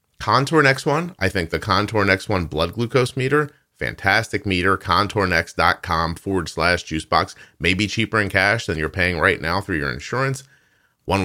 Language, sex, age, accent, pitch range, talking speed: English, male, 30-49, American, 85-120 Hz, 170 wpm